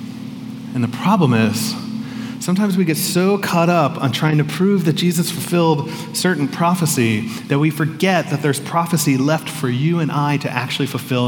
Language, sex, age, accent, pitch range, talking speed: English, male, 30-49, American, 160-220 Hz, 175 wpm